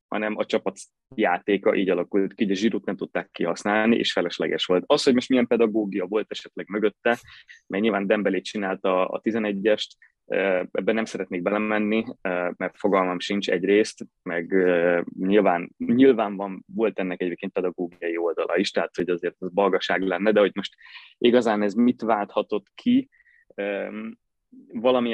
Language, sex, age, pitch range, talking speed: Hungarian, male, 20-39, 95-115 Hz, 145 wpm